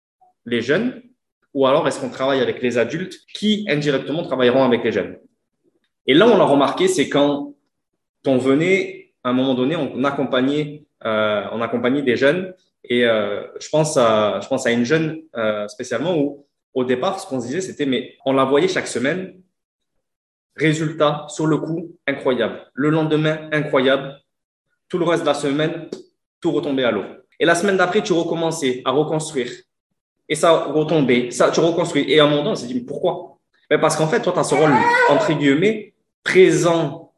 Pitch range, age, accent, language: 140-185 Hz, 20-39, French, French